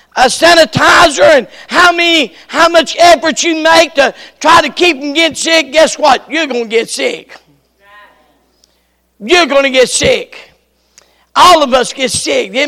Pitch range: 255-315 Hz